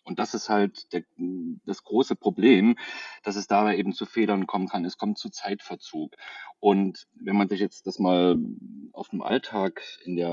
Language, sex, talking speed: German, male, 185 wpm